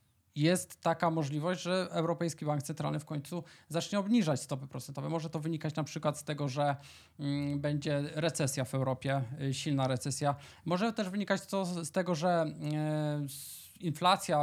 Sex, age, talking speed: male, 20-39, 140 wpm